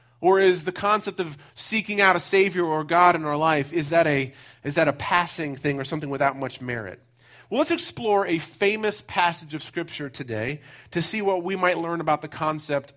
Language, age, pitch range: English, 30-49, 145-195 Hz